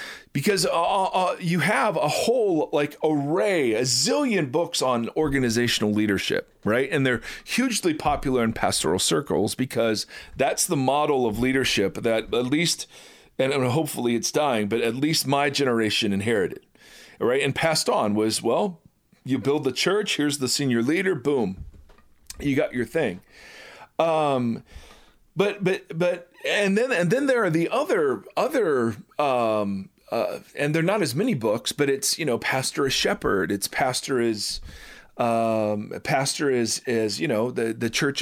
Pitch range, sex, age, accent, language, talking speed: 115-160 Hz, male, 40-59, American, English, 160 wpm